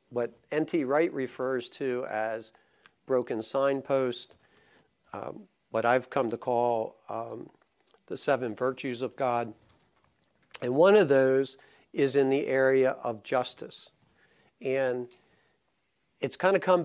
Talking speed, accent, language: 125 wpm, American, English